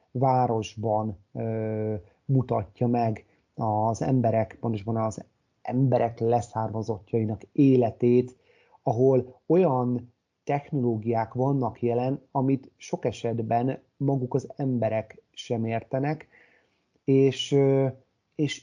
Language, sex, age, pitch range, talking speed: Hungarian, male, 30-49, 115-135 Hz, 85 wpm